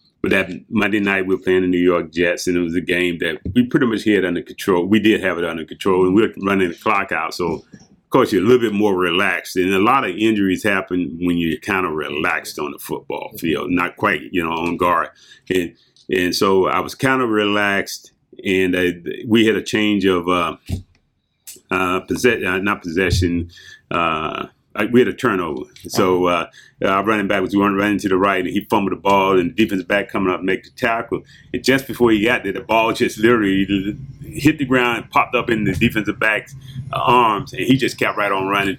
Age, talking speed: 30-49, 230 wpm